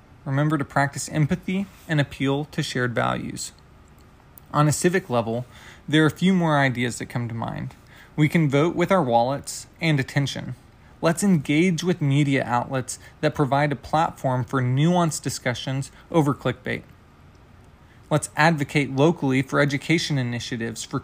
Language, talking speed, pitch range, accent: English, 150 wpm, 125-155 Hz, American